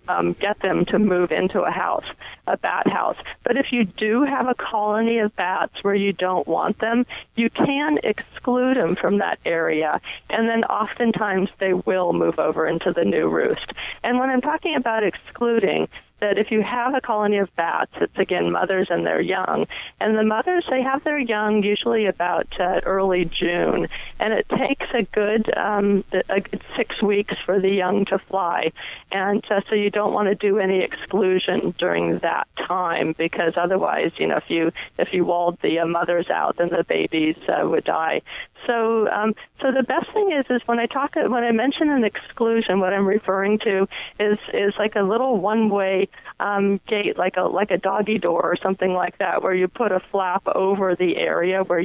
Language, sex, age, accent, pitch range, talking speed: English, female, 30-49, American, 185-225 Hz, 195 wpm